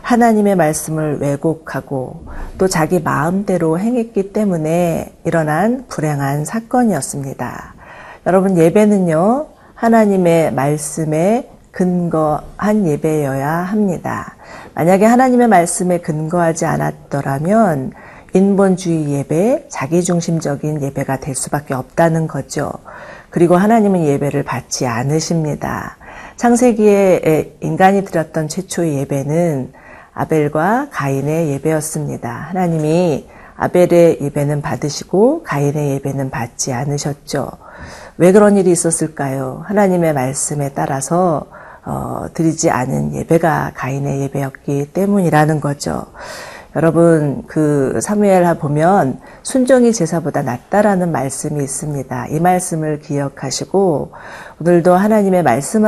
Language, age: Korean, 40-59